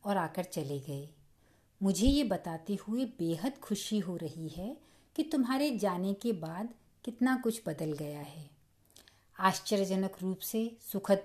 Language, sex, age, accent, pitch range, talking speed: Hindi, female, 50-69, native, 170-230 Hz, 145 wpm